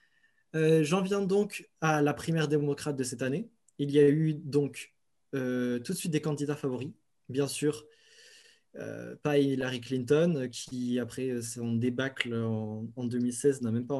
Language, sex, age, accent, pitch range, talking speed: French, male, 20-39, French, 125-155 Hz, 165 wpm